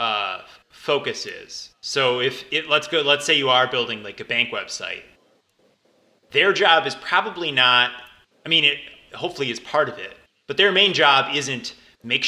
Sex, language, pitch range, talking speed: male, English, 125-160 Hz, 175 wpm